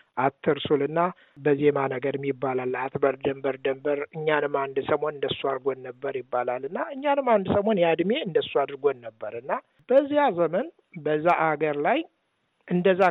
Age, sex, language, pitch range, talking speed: 60-79, male, Amharic, 145-185 Hz, 140 wpm